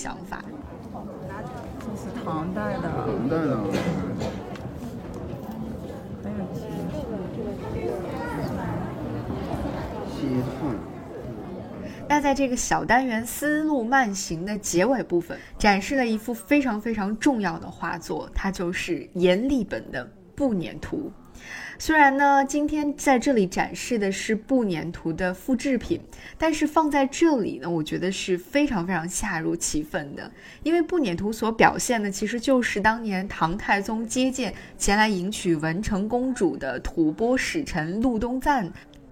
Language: Chinese